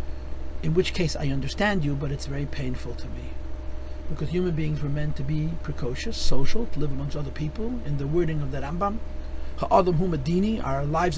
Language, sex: English, male